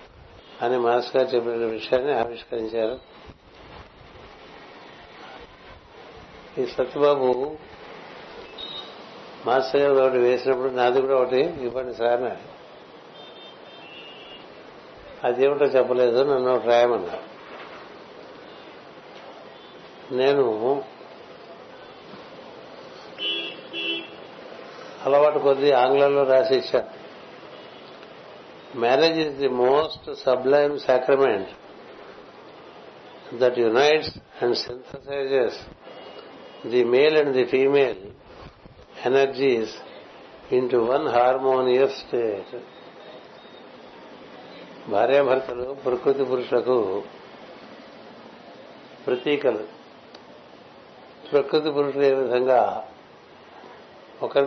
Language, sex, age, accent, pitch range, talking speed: Telugu, male, 60-79, native, 125-140 Hz, 60 wpm